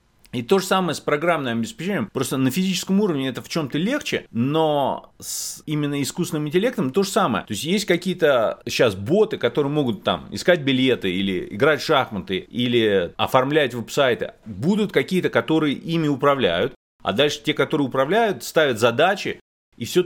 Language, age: Russian, 30-49